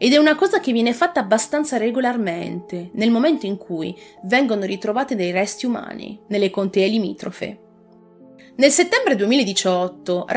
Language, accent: Italian, native